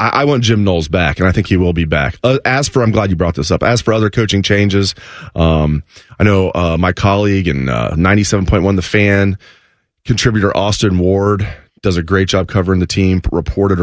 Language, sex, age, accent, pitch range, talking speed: English, male, 30-49, American, 95-115 Hz, 210 wpm